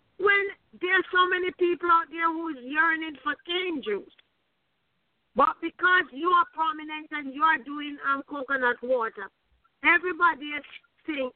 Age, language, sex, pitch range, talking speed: 50-69, English, female, 270-340 Hz, 150 wpm